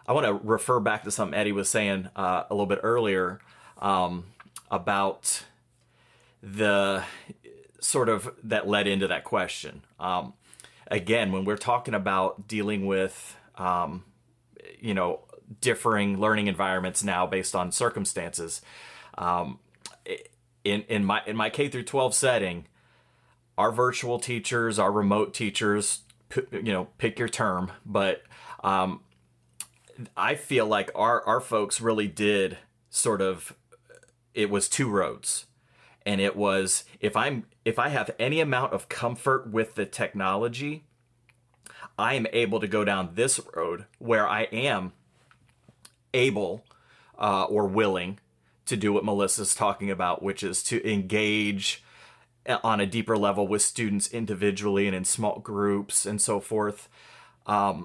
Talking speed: 140 wpm